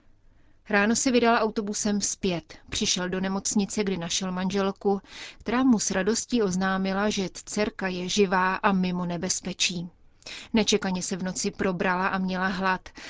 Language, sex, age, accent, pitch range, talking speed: Czech, female, 30-49, native, 185-210 Hz, 140 wpm